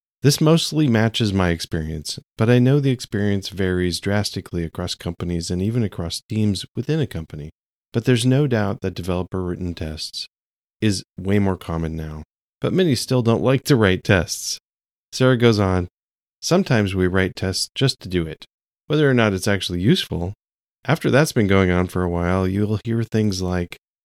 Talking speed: 175 wpm